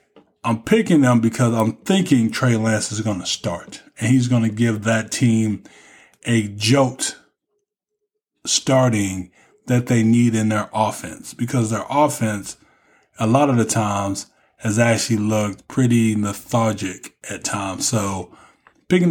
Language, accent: English, American